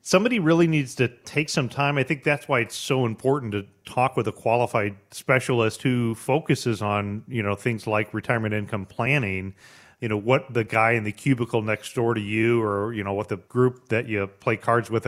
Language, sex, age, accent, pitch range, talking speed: English, male, 40-59, American, 105-120 Hz, 210 wpm